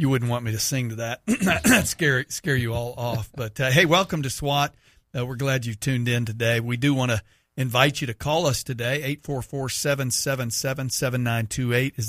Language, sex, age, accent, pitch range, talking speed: English, male, 40-59, American, 120-150 Hz, 205 wpm